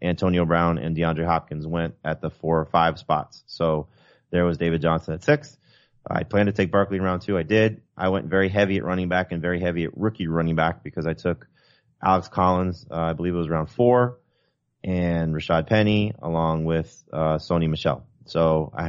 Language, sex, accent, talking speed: English, male, American, 205 wpm